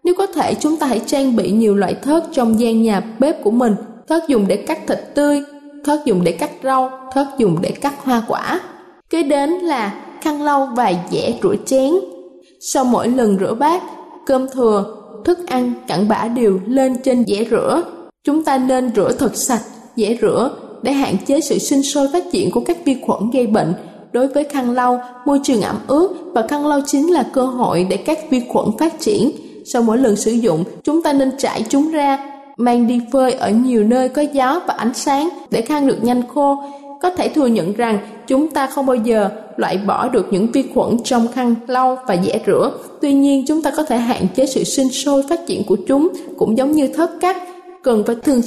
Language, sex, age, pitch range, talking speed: Vietnamese, female, 10-29, 230-290 Hz, 215 wpm